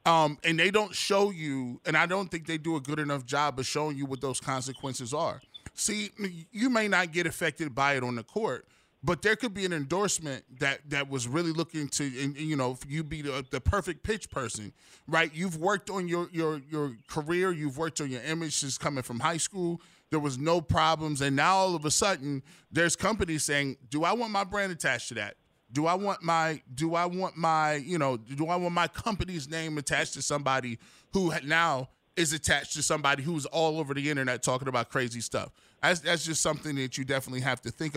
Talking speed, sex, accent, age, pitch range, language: 220 wpm, male, American, 20-39, 135-170 Hz, English